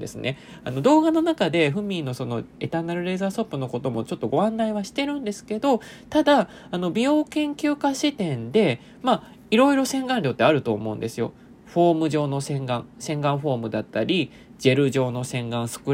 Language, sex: Japanese, male